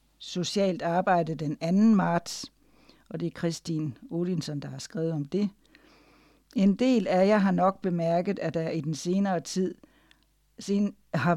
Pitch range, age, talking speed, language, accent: 165-200 Hz, 60-79, 155 wpm, Danish, native